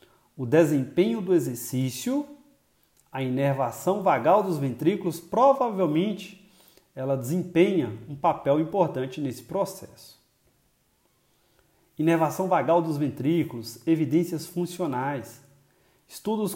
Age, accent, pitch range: 40-59, Brazilian, 130-175 Hz